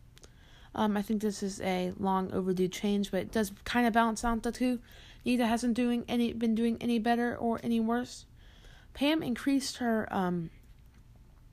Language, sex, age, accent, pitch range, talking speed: English, female, 20-39, American, 190-235 Hz, 165 wpm